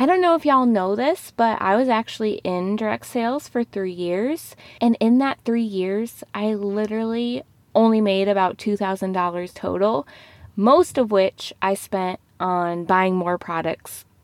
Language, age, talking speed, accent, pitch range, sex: English, 20-39, 170 wpm, American, 180-240 Hz, female